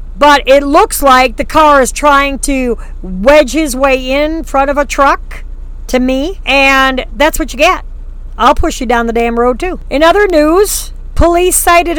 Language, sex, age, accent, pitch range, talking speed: English, female, 50-69, American, 230-310 Hz, 185 wpm